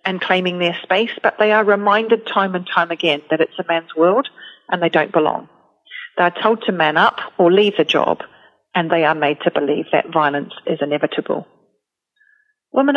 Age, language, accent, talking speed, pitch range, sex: 40-59, English, British, 195 wpm, 170-210 Hz, female